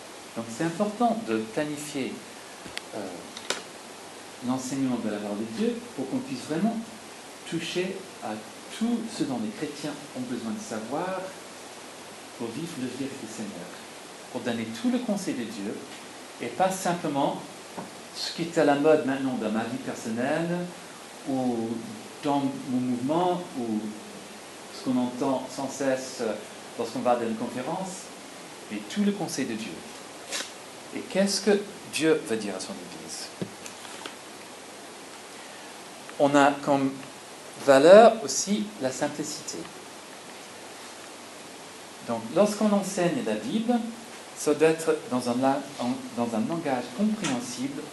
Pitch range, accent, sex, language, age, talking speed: 125-200 Hz, French, male, French, 40-59, 135 wpm